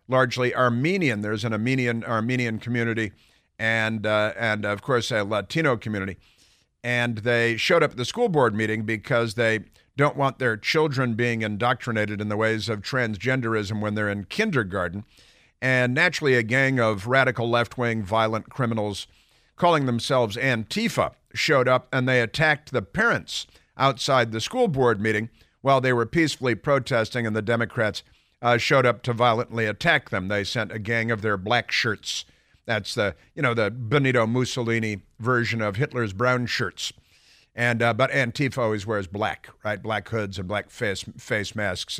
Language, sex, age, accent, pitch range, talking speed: English, male, 50-69, American, 105-125 Hz, 165 wpm